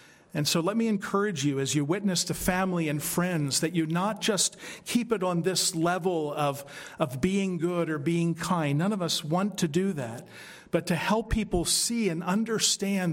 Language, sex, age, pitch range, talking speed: English, male, 50-69, 145-175 Hz, 195 wpm